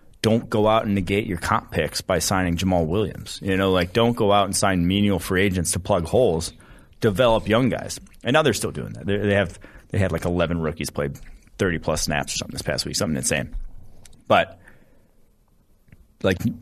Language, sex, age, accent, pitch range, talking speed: English, male, 30-49, American, 85-100 Hz, 200 wpm